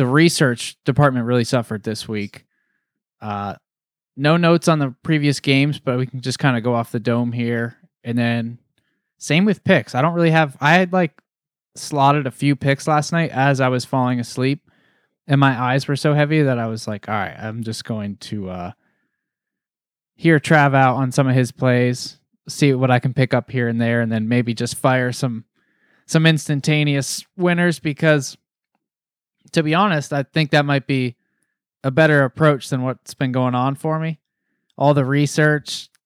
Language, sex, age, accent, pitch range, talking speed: English, male, 20-39, American, 125-150 Hz, 190 wpm